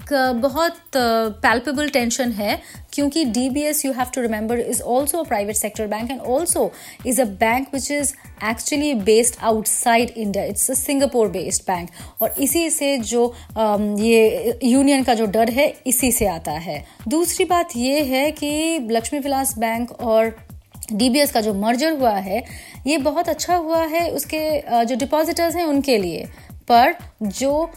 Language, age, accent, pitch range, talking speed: Hindi, 30-49, native, 220-285 Hz, 160 wpm